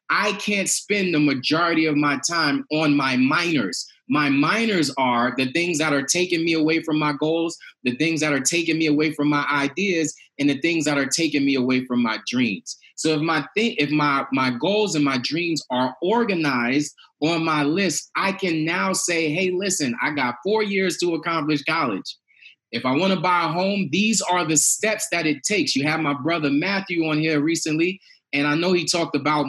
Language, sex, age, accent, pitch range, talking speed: English, male, 30-49, American, 145-195 Hz, 205 wpm